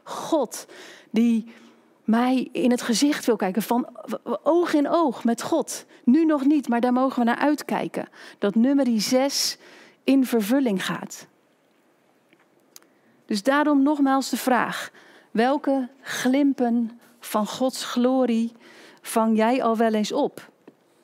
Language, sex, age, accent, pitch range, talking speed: Dutch, female, 40-59, Dutch, 220-280 Hz, 130 wpm